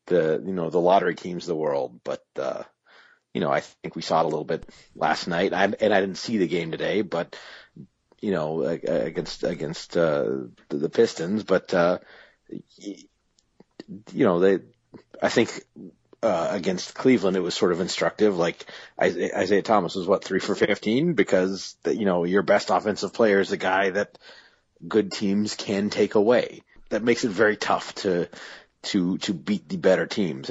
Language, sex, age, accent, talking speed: English, male, 30-49, American, 180 wpm